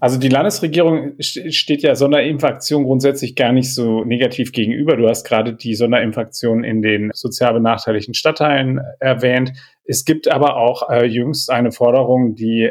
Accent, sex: German, male